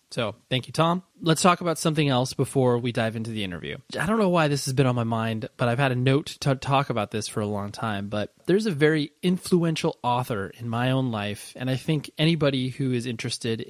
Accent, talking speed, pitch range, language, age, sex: American, 240 wpm, 110-145 Hz, English, 20-39, male